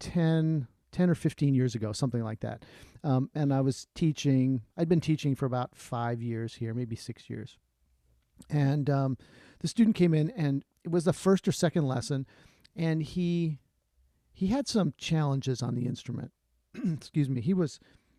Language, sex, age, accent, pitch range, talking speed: English, male, 40-59, American, 120-155 Hz, 170 wpm